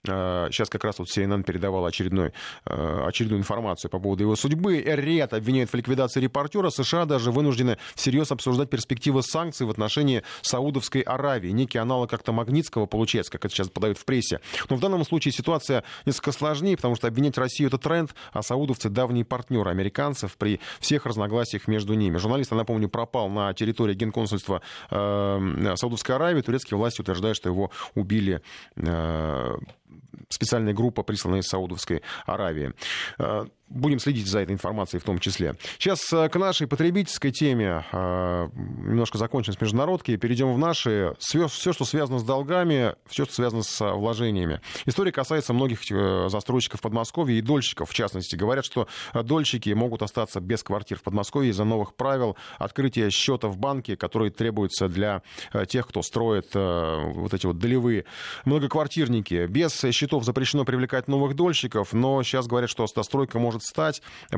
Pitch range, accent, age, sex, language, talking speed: 100-135 Hz, native, 20-39, male, Russian, 150 wpm